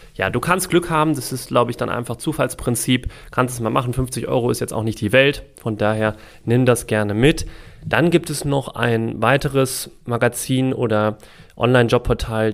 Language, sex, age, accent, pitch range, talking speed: German, male, 30-49, German, 110-125 Hz, 185 wpm